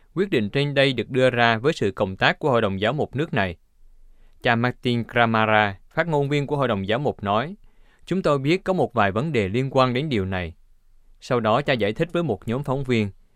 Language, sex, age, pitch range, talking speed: Vietnamese, male, 20-39, 105-140 Hz, 240 wpm